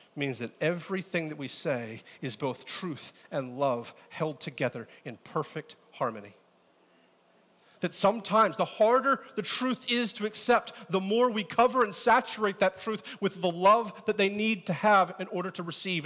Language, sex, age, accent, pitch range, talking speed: English, male, 40-59, American, 140-225 Hz, 170 wpm